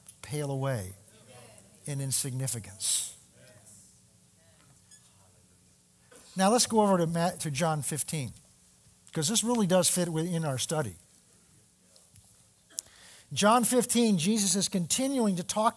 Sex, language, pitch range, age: male, English, 160-210 Hz, 50-69